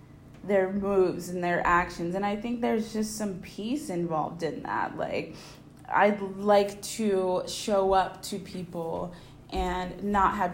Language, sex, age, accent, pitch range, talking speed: English, female, 20-39, American, 175-205 Hz, 150 wpm